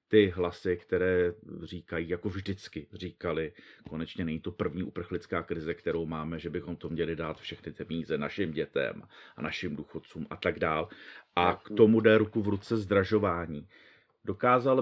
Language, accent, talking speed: Czech, native, 160 wpm